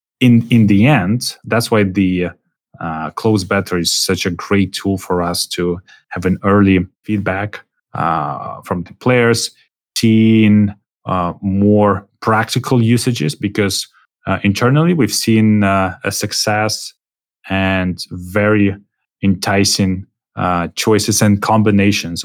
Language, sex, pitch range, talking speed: English, male, 95-110 Hz, 125 wpm